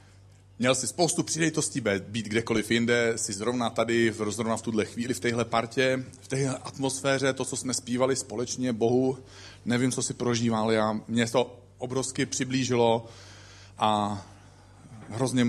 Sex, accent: male, native